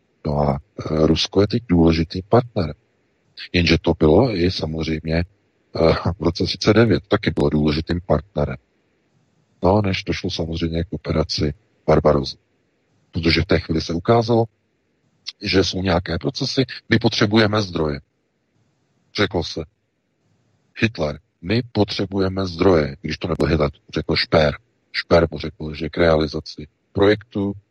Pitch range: 75-95 Hz